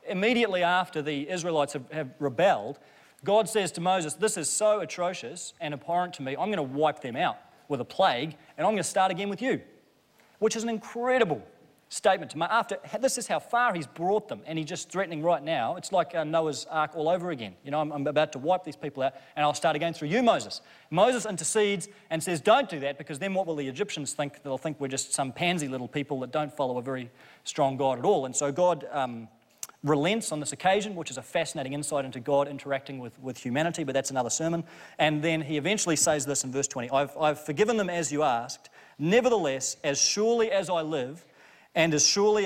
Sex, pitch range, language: male, 145-185 Hz, English